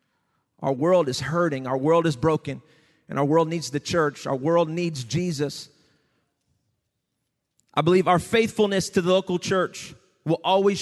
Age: 30-49